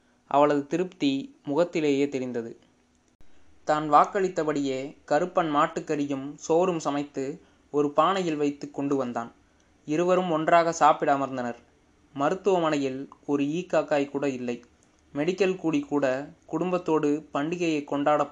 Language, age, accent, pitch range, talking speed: Tamil, 20-39, native, 130-155 Hz, 100 wpm